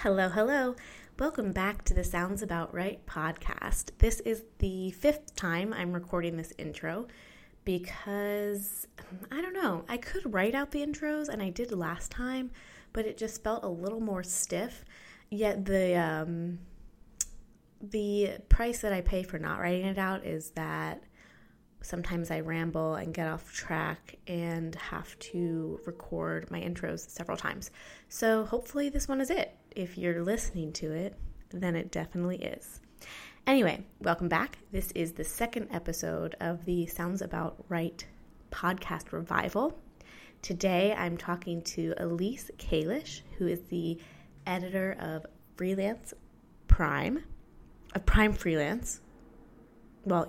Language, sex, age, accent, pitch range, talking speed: English, female, 20-39, American, 170-215 Hz, 140 wpm